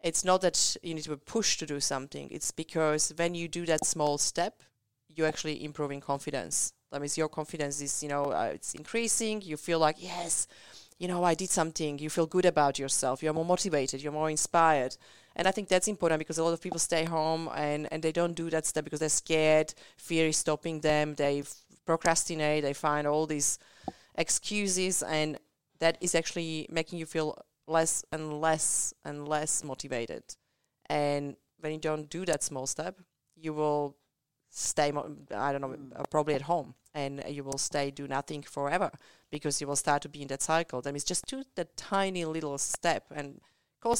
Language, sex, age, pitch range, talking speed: English, female, 30-49, 145-165 Hz, 195 wpm